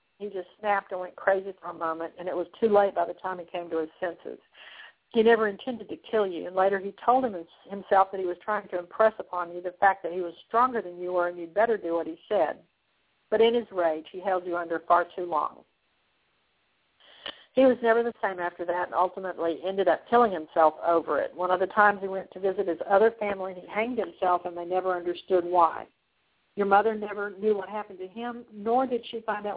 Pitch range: 180-210 Hz